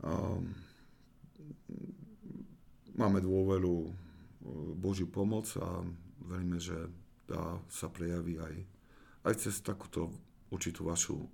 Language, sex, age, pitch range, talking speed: Slovak, male, 50-69, 85-105 Hz, 80 wpm